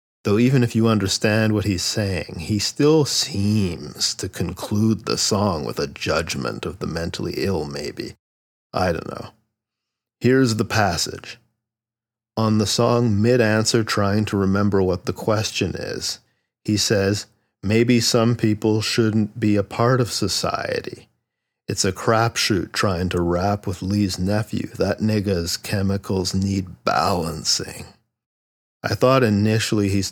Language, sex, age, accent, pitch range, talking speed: English, male, 50-69, American, 95-110 Hz, 135 wpm